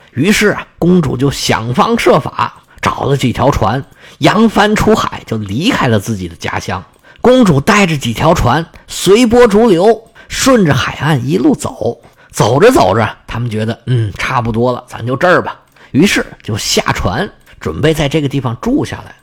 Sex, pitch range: male, 125-195 Hz